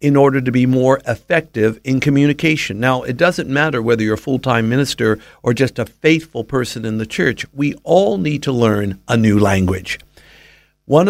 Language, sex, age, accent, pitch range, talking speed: English, male, 60-79, American, 115-150 Hz, 185 wpm